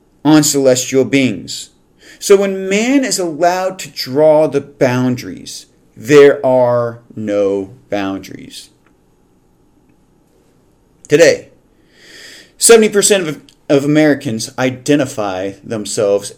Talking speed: 85 wpm